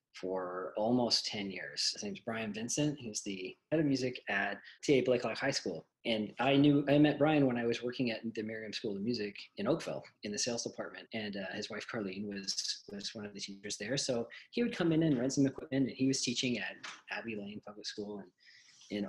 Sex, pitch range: male, 110-140 Hz